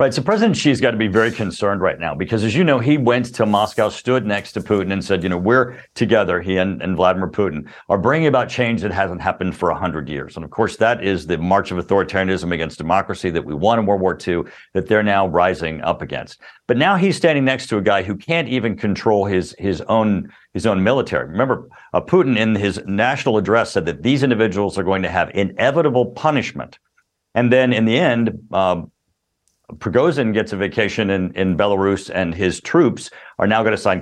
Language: English